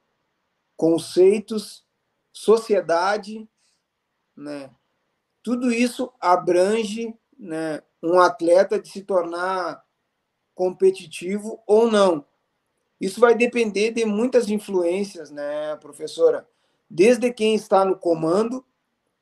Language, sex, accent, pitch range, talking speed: Portuguese, male, Brazilian, 185-235 Hz, 85 wpm